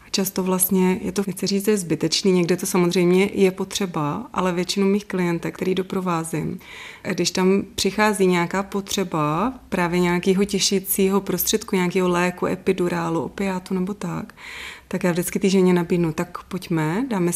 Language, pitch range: Czech, 185-205 Hz